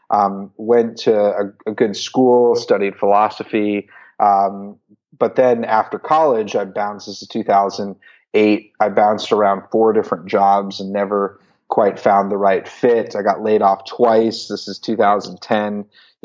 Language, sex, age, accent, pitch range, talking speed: English, male, 30-49, American, 100-110 Hz, 150 wpm